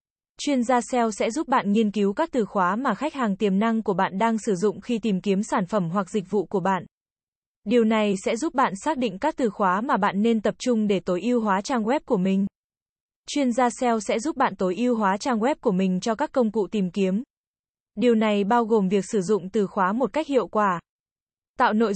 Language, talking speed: Vietnamese, 240 wpm